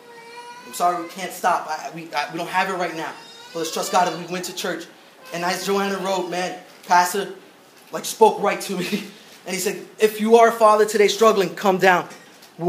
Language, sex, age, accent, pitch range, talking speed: English, male, 20-39, American, 180-225 Hz, 220 wpm